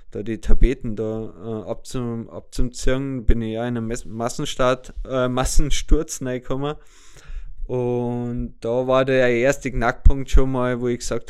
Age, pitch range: 20-39, 110-130 Hz